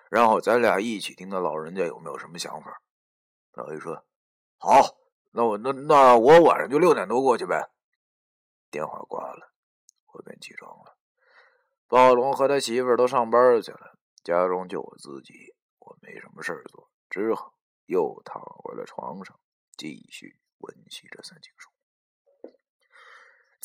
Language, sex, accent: Chinese, male, native